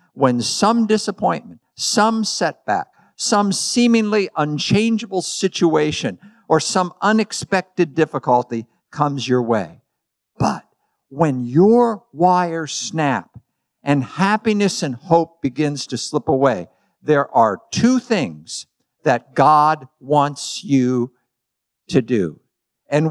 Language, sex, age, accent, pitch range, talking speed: English, male, 50-69, American, 125-185 Hz, 105 wpm